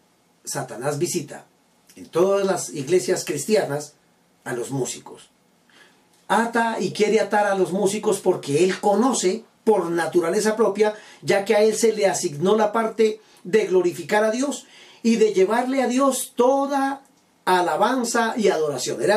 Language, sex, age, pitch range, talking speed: Spanish, male, 40-59, 185-235 Hz, 145 wpm